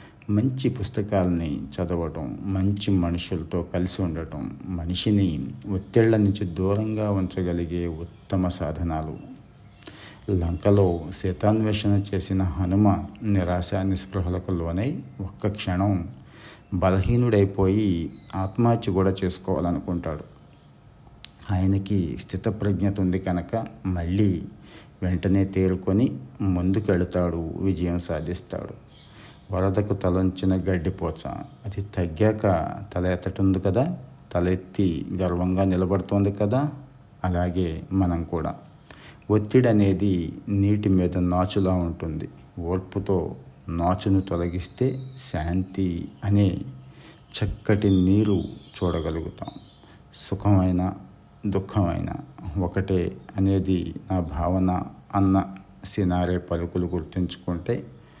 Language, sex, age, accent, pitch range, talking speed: Telugu, male, 50-69, native, 90-100 Hz, 75 wpm